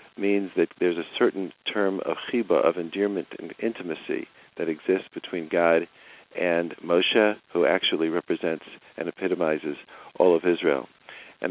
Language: English